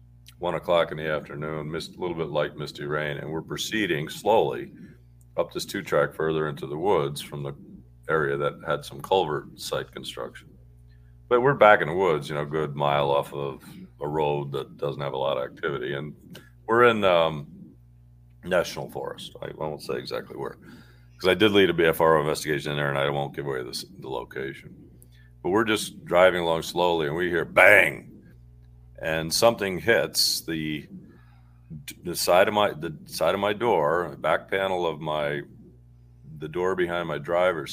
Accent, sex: American, male